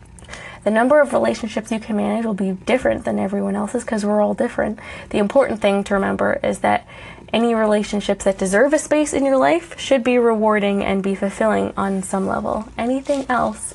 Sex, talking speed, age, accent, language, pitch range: female, 190 wpm, 20-39, American, English, 195-250 Hz